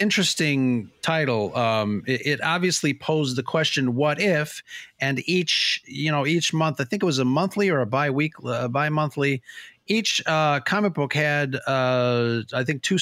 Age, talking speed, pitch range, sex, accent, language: 30-49, 170 wpm, 125-160 Hz, male, American, English